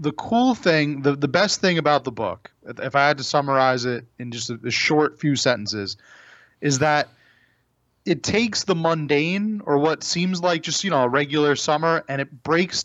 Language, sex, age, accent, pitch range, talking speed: English, male, 30-49, American, 125-165 Hz, 195 wpm